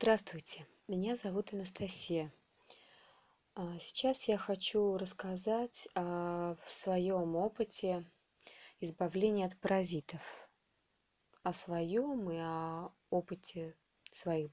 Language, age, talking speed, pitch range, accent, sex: Russian, 20-39, 85 wpm, 170-205 Hz, native, female